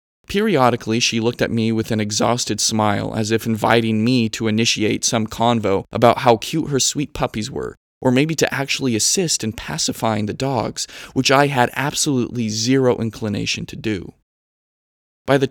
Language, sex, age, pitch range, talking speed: English, male, 20-39, 110-130 Hz, 165 wpm